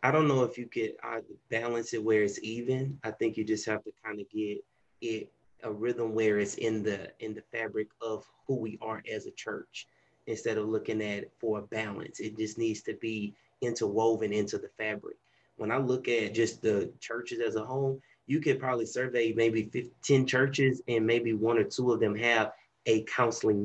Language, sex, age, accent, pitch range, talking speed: English, male, 30-49, American, 110-125 Hz, 205 wpm